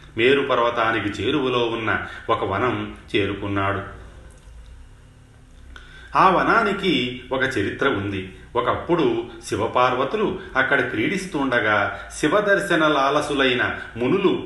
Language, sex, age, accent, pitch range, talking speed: Telugu, male, 40-59, native, 100-130 Hz, 75 wpm